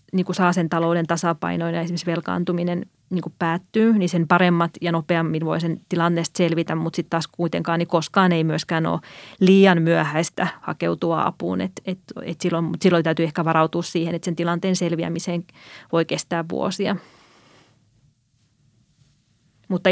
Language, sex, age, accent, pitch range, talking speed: Finnish, female, 20-39, native, 165-180 Hz, 150 wpm